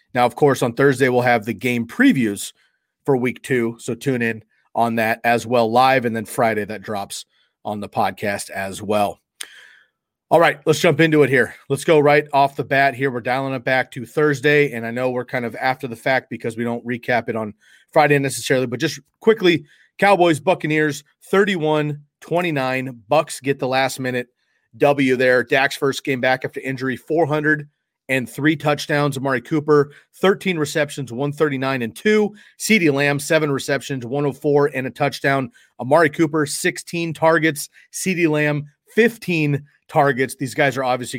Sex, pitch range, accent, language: male, 130-155 Hz, American, English